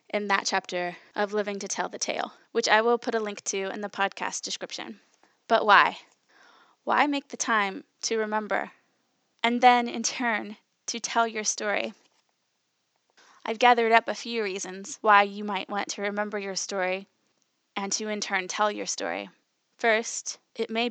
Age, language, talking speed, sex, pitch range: 10-29, English, 170 wpm, female, 200-230 Hz